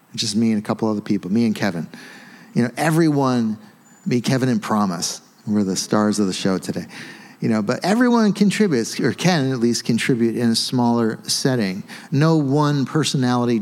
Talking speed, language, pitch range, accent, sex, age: 180 wpm, English, 115-155 Hz, American, male, 40-59